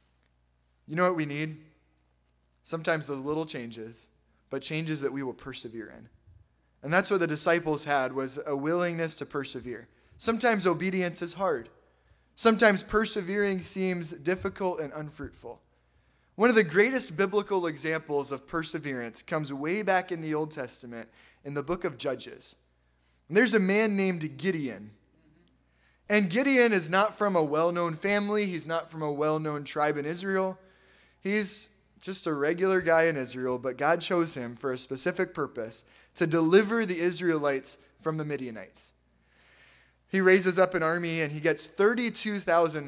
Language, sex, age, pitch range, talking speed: English, male, 20-39, 135-190 Hz, 155 wpm